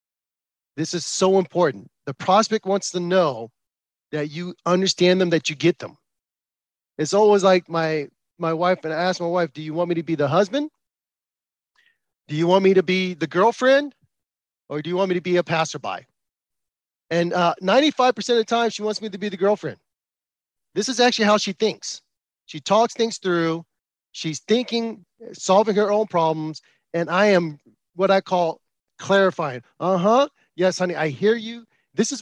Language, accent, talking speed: English, American, 180 wpm